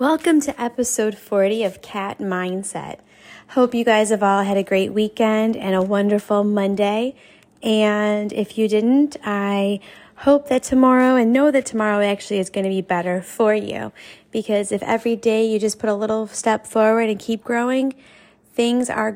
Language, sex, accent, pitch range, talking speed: English, female, American, 205-240 Hz, 170 wpm